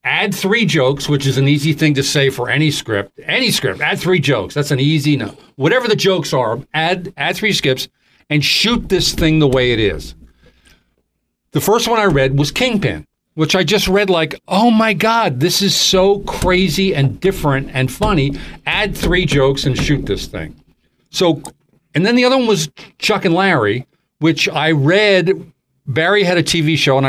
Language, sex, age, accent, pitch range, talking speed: English, male, 40-59, American, 130-180 Hz, 195 wpm